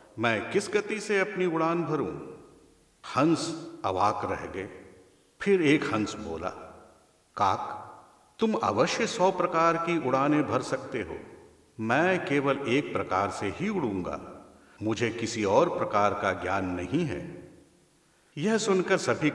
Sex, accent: male, native